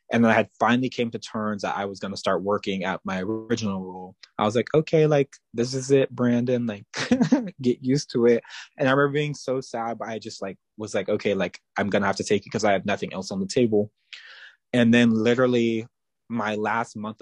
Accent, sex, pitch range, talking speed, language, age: American, male, 100-120 Hz, 235 wpm, English, 20-39